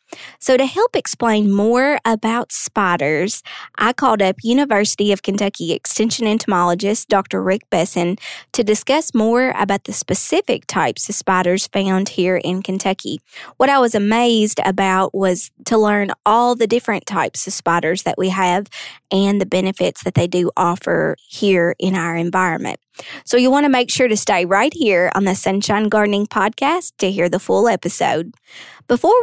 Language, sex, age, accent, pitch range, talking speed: English, female, 20-39, American, 190-230 Hz, 165 wpm